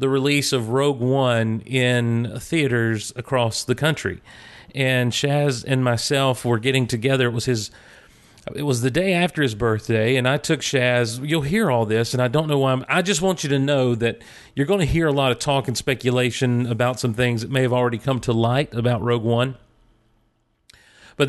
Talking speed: 205 wpm